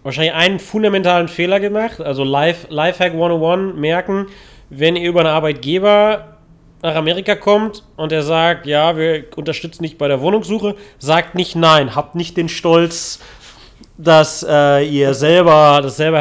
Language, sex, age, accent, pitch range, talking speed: German, male, 30-49, German, 135-165 Hz, 150 wpm